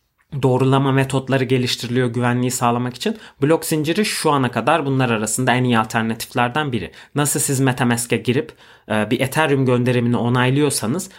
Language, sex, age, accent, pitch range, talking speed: Turkish, male, 30-49, native, 115-135 Hz, 135 wpm